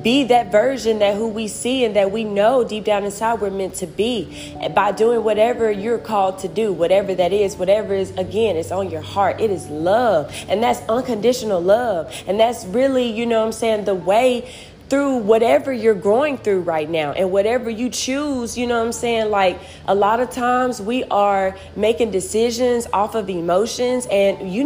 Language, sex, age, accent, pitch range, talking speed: English, female, 20-39, American, 195-235 Hz, 200 wpm